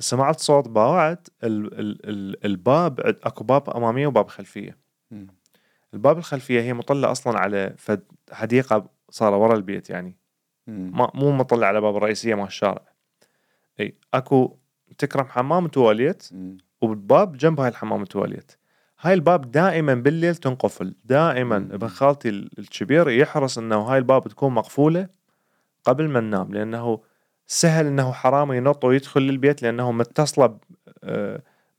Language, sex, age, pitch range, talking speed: Arabic, male, 30-49, 110-145 Hz, 120 wpm